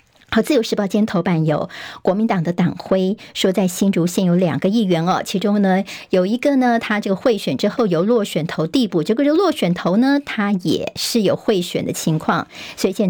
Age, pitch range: 50-69, 180-235 Hz